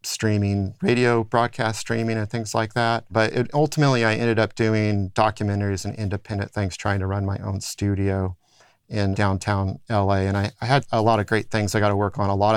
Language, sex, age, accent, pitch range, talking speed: English, male, 40-59, American, 100-115 Hz, 205 wpm